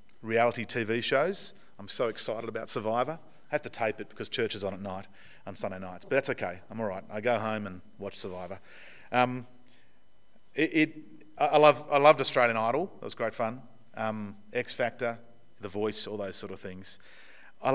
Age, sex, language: 40-59, male, English